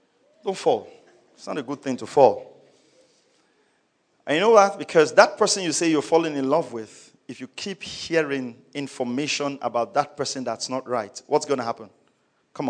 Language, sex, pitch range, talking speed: English, male, 130-175 Hz, 185 wpm